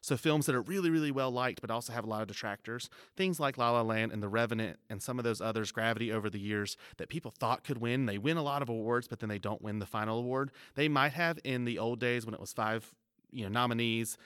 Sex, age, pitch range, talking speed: male, 30-49, 110-140 Hz, 270 wpm